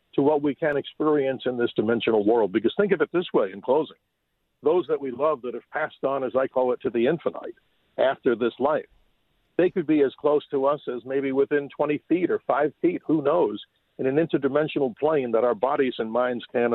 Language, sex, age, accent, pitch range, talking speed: English, male, 50-69, American, 120-150 Hz, 220 wpm